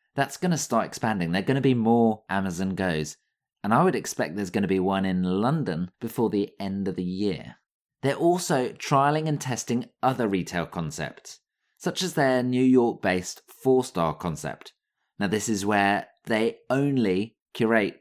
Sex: male